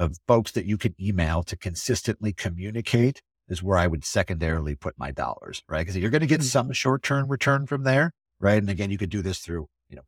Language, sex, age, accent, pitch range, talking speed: English, male, 50-69, American, 85-105 Hz, 225 wpm